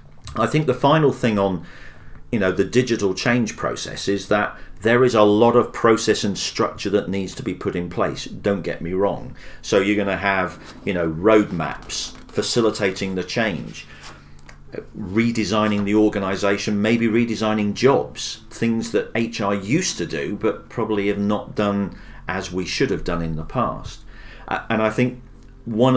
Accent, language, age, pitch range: British, English, 40-59, 95-110 Hz